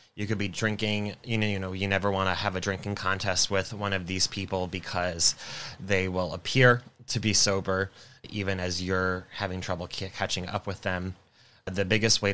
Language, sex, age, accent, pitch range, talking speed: English, male, 20-39, American, 95-110 Hz, 195 wpm